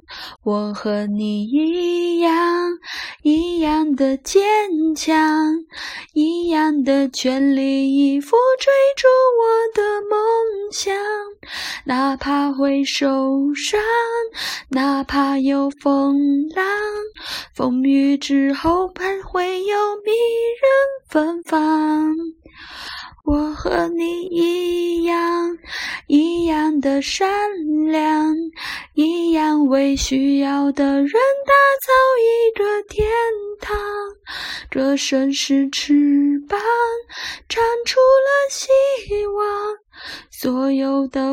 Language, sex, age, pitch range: Chinese, female, 20-39, 280-410 Hz